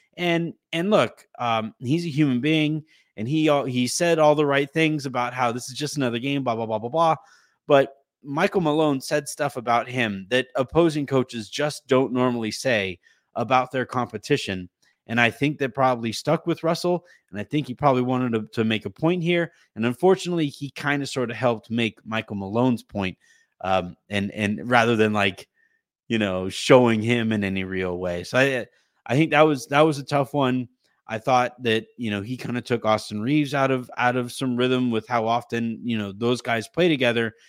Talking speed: 205 wpm